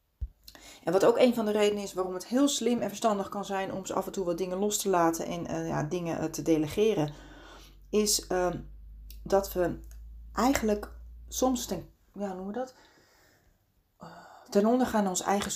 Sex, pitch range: female, 165-210 Hz